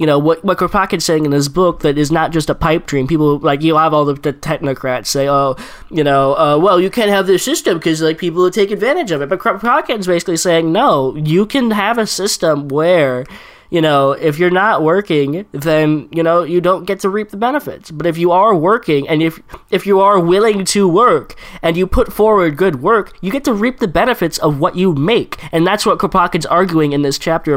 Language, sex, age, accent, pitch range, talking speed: English, male, 10-29, American, 145-190 Hz, 235 wpm